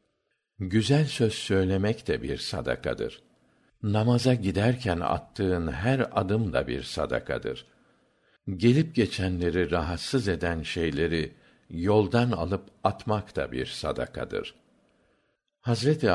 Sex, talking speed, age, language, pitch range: male, 95 wpm, 60-79, Turkish, 80-110 Hz